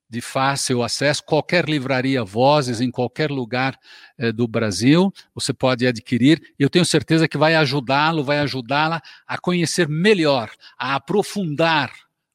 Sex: male